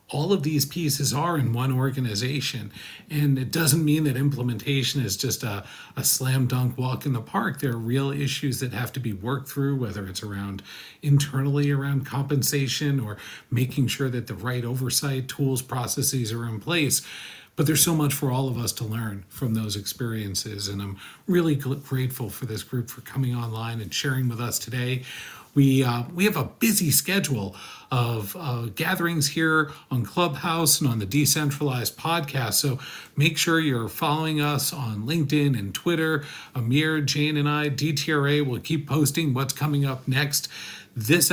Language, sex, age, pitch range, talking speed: English, male, 40-59, 125-150 Hz, 175 wpm